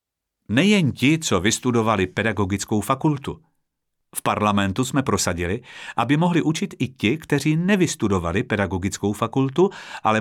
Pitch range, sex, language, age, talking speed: 100-140 Hz, male, Czech, 50-69, 120 wpm